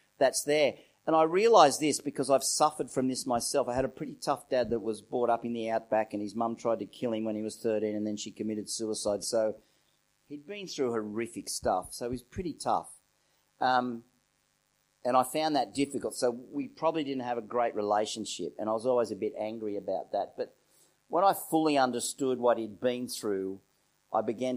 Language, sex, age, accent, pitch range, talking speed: English, male, 40-59, Australian, 110-135 Hz, 210 wpm